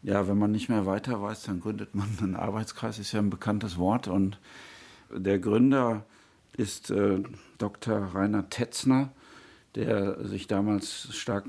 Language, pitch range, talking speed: German, 100-120 Hz, 150 wpm